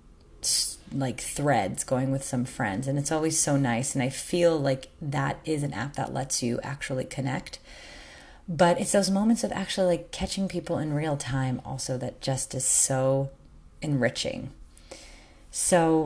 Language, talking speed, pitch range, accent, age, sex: English, 160 wpm, 135-175 Hz, American, 30-49, female